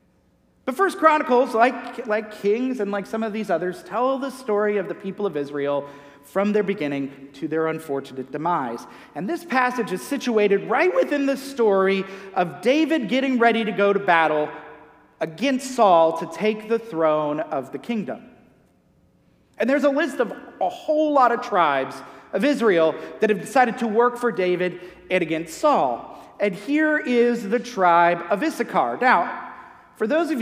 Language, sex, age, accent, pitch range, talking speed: English, male, 40-59, American, 170-245 Hz, 170 wpm